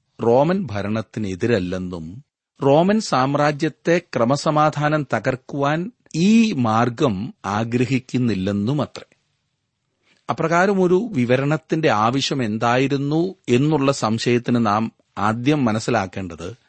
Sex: male